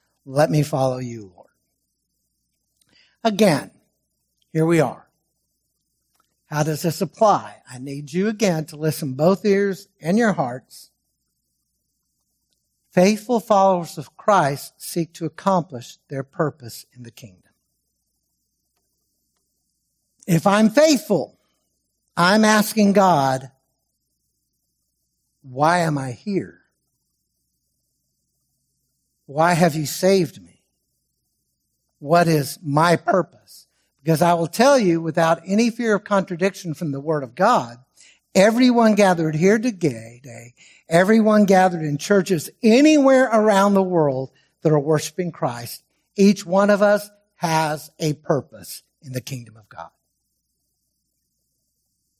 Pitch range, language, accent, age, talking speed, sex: 135-195 Hz, English, American, 60-79, 115 wpm, male